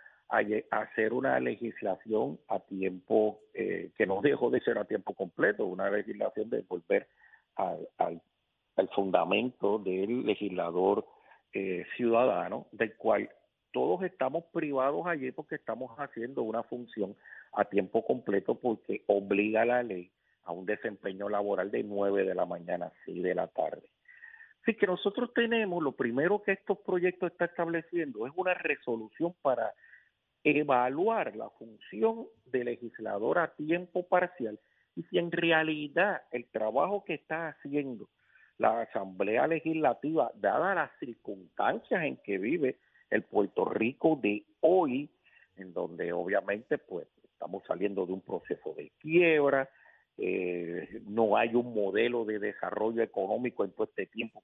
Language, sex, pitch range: Spanish, male, 115-185 Hz